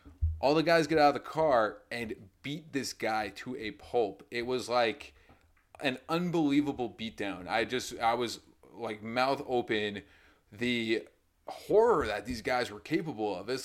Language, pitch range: English, 115-170 Hz